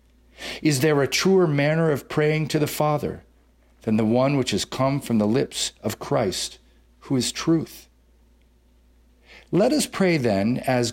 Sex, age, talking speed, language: male, 50-69, 160 wpm, English